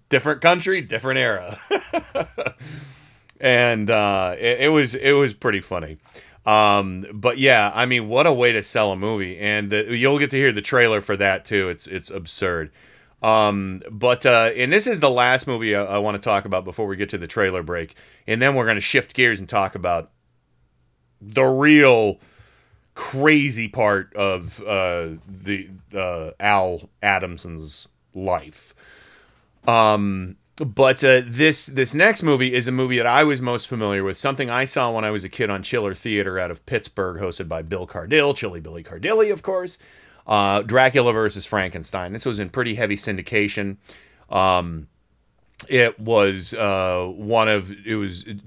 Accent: American